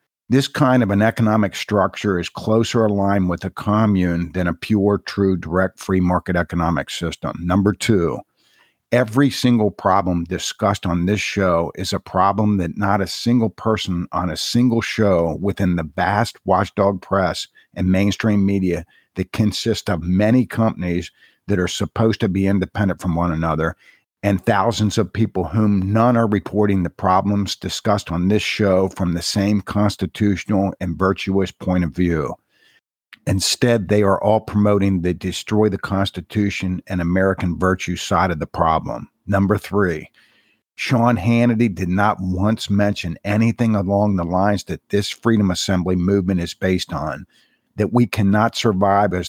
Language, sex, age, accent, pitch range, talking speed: English, male, 50-69, American, 90-105 Hz, 155 wpm